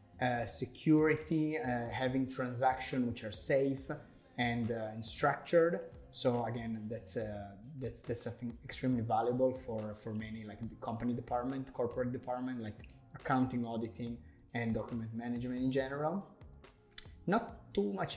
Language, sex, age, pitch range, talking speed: English, male, 20-39, 115-140 Hz, 135 wpm